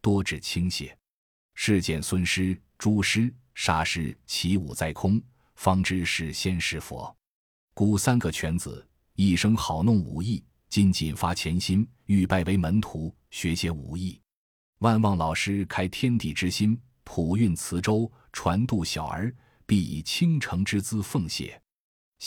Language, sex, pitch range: Chinese, male, 85-105 Hz